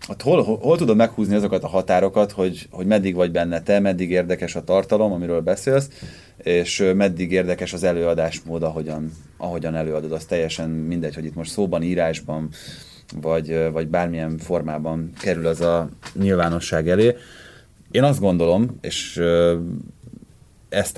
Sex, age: male, 30-49